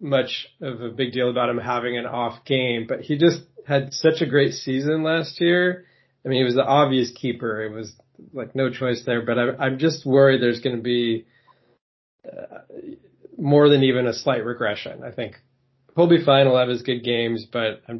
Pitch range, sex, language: 115-140 Hz, male, English